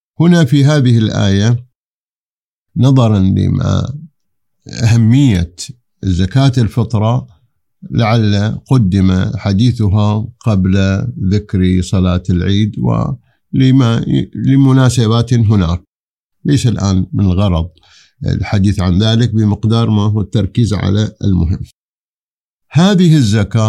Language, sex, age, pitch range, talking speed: Arabic, male, 50-69, 100-125 Hz, 85 wpm